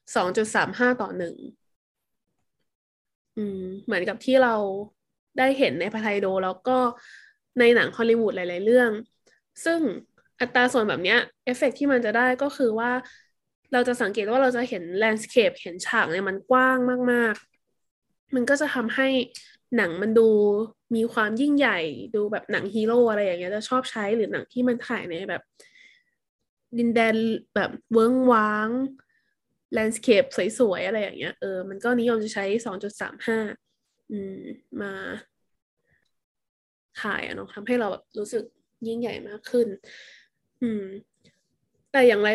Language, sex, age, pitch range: Thai, female, 10-29, 215-255 Hz